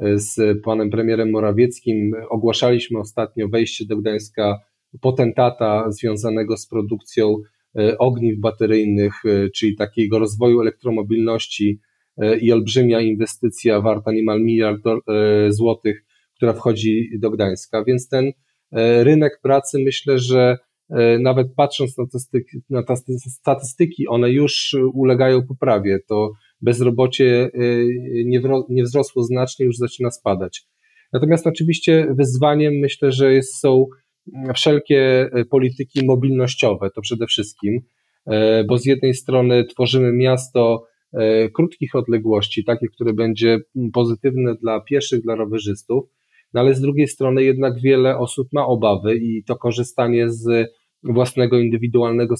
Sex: male